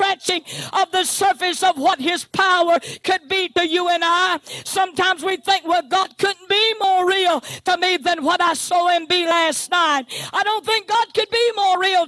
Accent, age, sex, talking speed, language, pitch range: American, 50-69, female, 200 wpm, English, 350-375 Hz